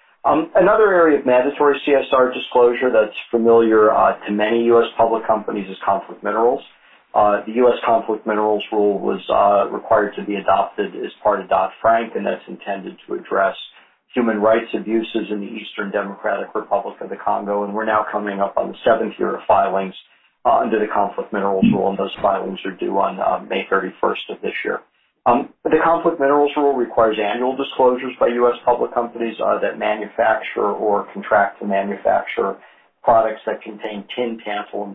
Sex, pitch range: male, 105-120 Hz